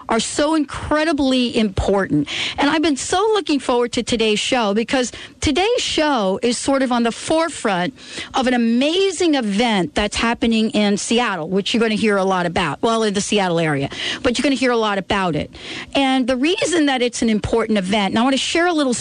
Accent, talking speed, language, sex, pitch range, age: American, 210 wpm, English, female, 210-275 Hz, 50-69